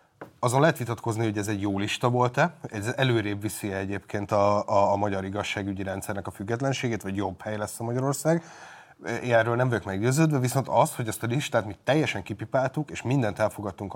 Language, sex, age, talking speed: Hungarian, male, 30-49, 185 wpm